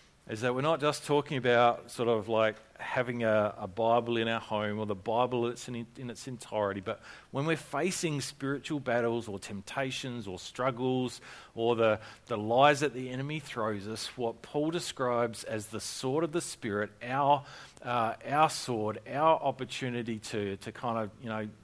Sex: male